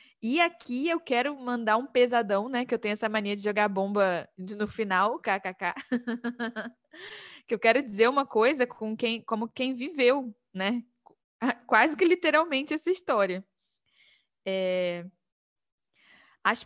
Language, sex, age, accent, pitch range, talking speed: Portuguese, female, 10-29, Brazilian, 205-260 Hz, 130 wpm